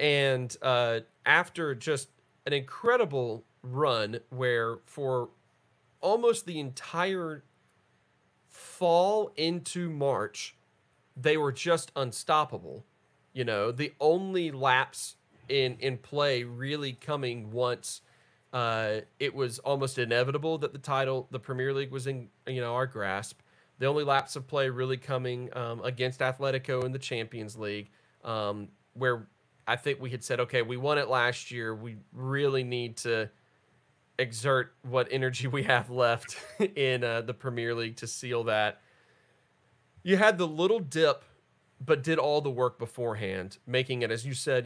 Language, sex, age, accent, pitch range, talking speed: English, male, 40-59, American, 120-145 Hz, 145 wpm